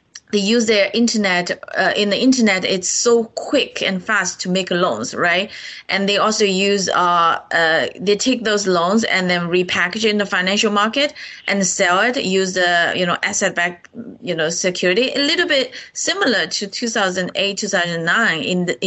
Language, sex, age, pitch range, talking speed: English, female, 20-39, 180-220 Hz, 190 wpm